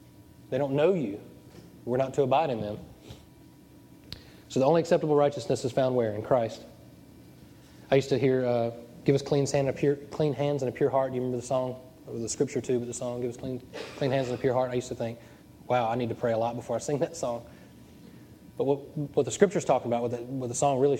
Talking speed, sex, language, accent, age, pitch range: 245 wpm, male, English, American, 20-39, 120-140 Hz